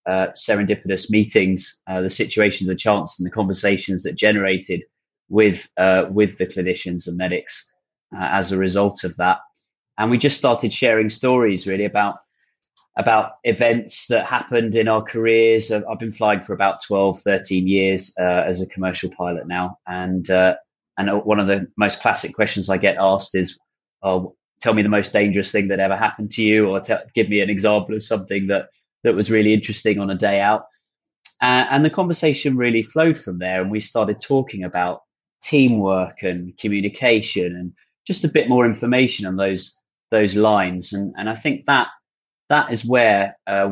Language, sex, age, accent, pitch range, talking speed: English, male, 20-39, British, 95-110 Hz, 185 wpm